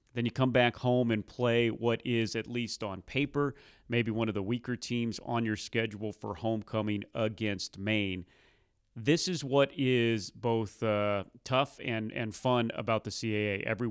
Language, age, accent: English, 30-49, American